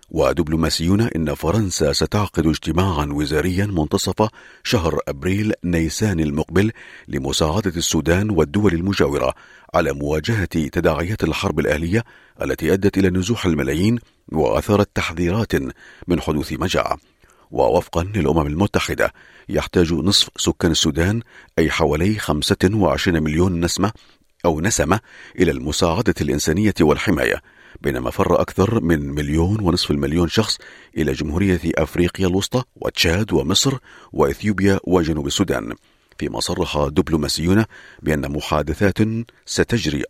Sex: male